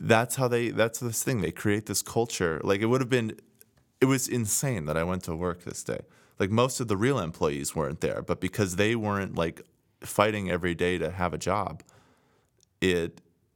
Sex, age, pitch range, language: male, 20-39, 90-105 Hz, English